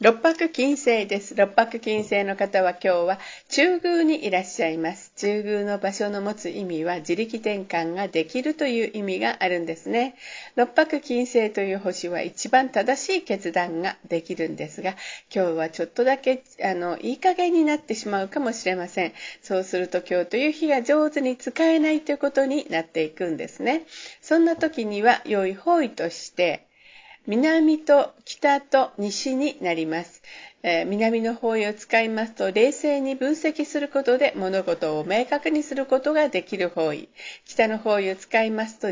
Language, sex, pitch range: Japanese, female, 190-280 Hz